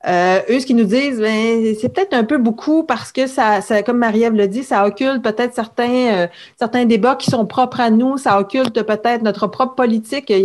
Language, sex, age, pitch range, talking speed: French, female, 40-59, 195-245 Hz, 225 wpm